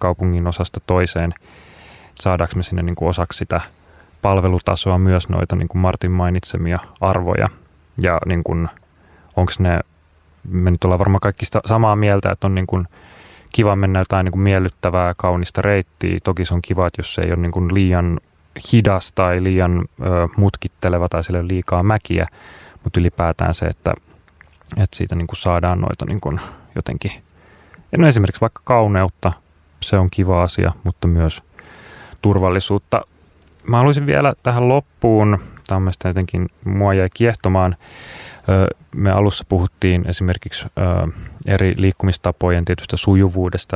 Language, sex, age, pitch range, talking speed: Finnish, male, 30-49, 85-100 Hz, 130 wpm